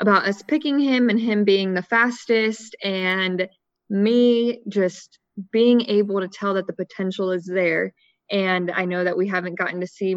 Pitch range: 185-230 Hz